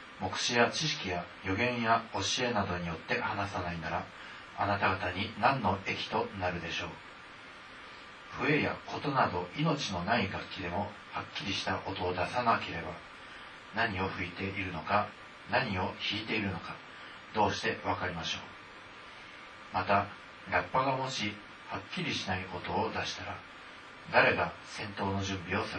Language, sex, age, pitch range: Japanese, male, 40-59, 90-115 Hz